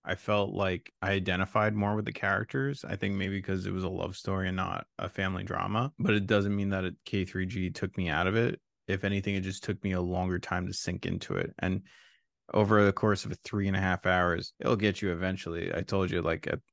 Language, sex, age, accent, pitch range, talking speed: English, male, 20-39, American, 90-105 Hz, 240 wpm